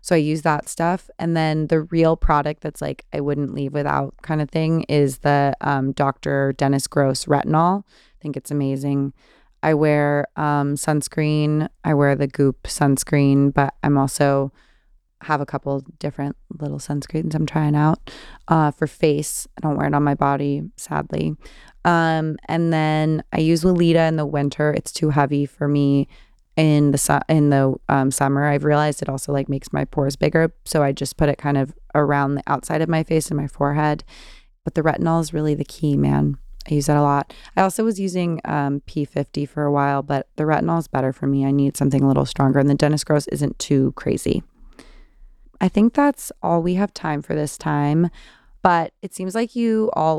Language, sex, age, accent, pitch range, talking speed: English, female, 20-39, American, 140-160 Hz, 200 wpm